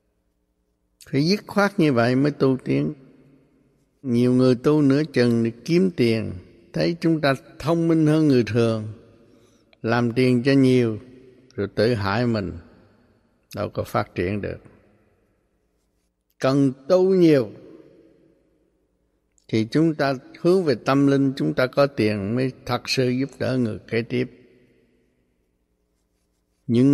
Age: 60-79